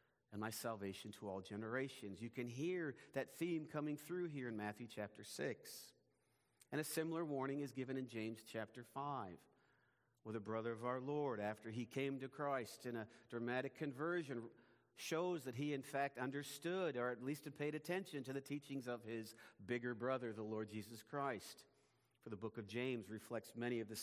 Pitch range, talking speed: 115-165 Hz, 185 wpm